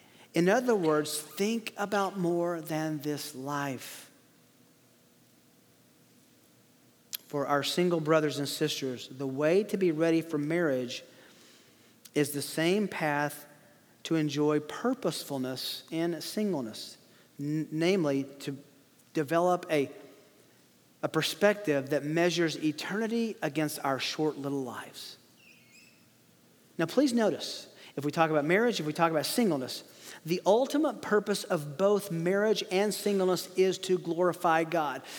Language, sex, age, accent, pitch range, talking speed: English, male, 40-59, American, 155-220 Hz, 120 wpm